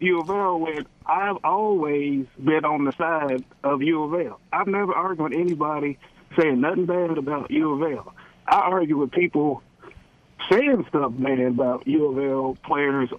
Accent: American